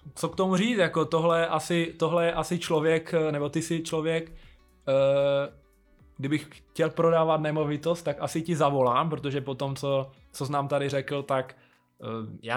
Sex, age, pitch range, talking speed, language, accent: male, 20-39, 125-150 Hz, 155 wpm, Czech, native